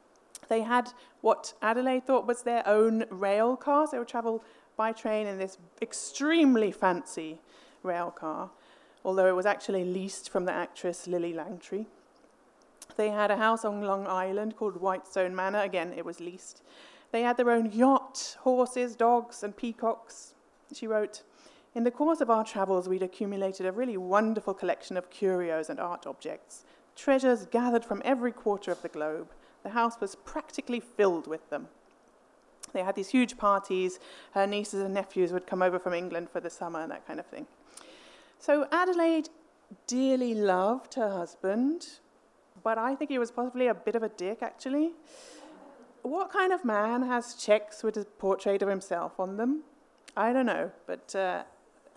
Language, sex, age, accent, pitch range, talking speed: English, female, 30-49, British, 195-260 Hz, 170 wpm